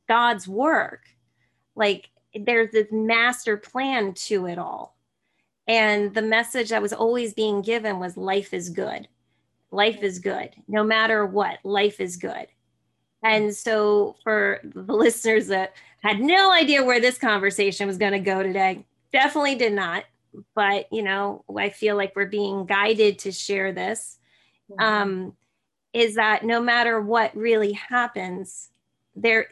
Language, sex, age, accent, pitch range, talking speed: English, female, 30-49, American, 200-240 Hz, 145 wpm